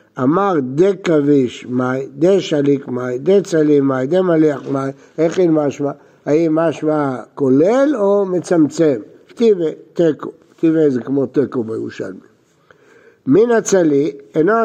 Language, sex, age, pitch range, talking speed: Hebrew, male, 60-79, 145-200 Hz, 110 wpm